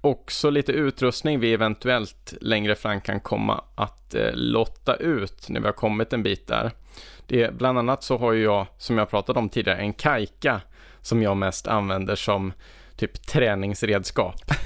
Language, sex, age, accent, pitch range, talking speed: Swedish, male, 20-39, Norwegian, 100-125 Hz, 170 wpm